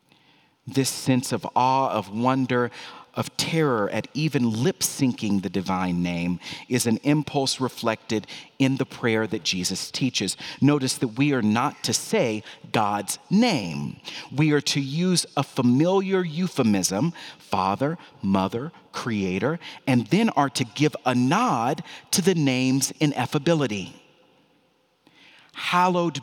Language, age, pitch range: English, 40-59, 115-160 Hz